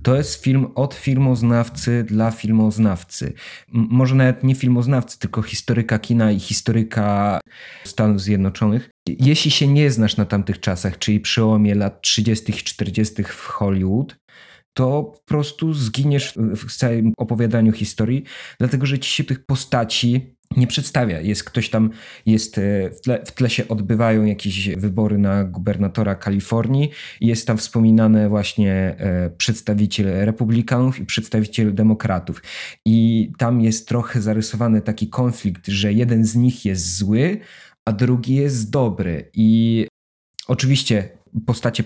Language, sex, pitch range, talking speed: Polish, male, 105-125 Hz, 135 wpm